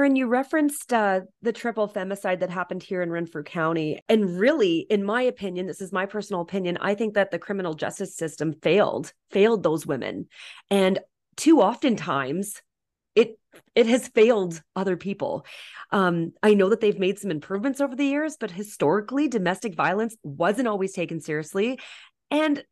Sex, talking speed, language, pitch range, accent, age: female, 165 wpm, English, 180-240 Hz, American, 30-49